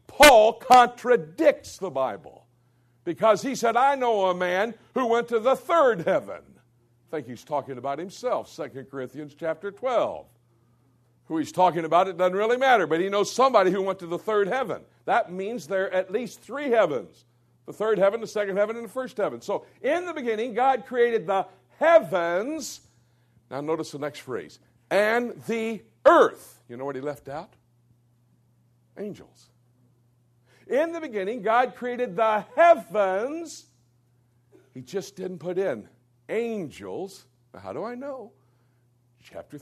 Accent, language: American, English